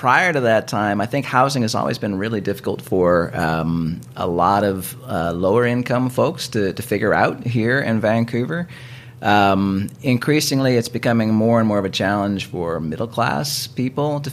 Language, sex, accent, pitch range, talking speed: English, male, American, 90-125 Hz, 170 wpm